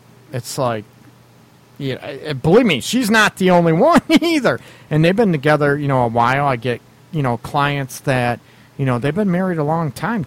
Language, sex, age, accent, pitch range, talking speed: English, male, 40-59, American, 120-150 Hz, 230 wpm